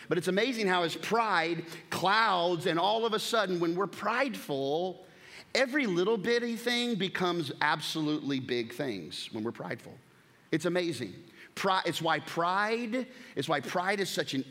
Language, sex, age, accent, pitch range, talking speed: English, male, 30-49, American, 130-185 Hz, 155 wpm